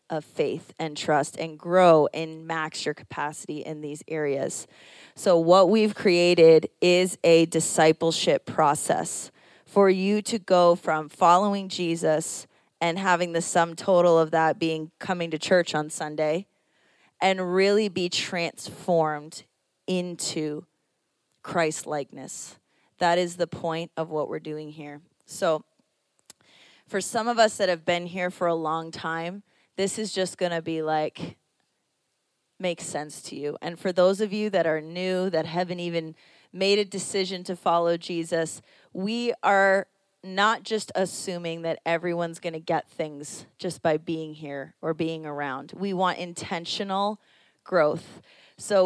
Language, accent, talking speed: English, American, 150 wpm